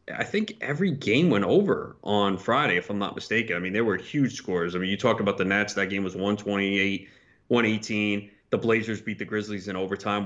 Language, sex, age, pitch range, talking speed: English, male, 30-49, 100-145 Hz, 210 wpm